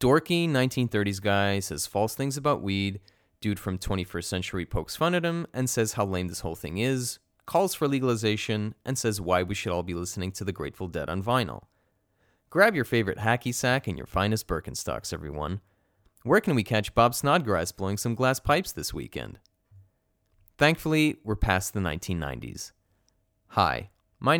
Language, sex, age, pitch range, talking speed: English, male, 30-49, 90-120 Hz, 170 wpm